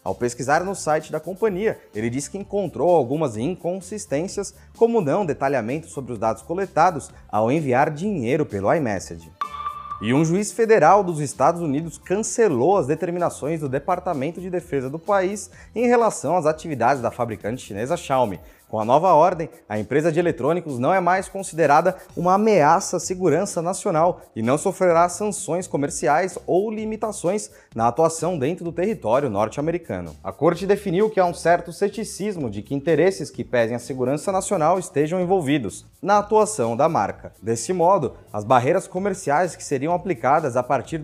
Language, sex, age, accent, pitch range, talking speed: Portuguese, male, 20-39, Brazilian, 135-190 Hz, 160 wpm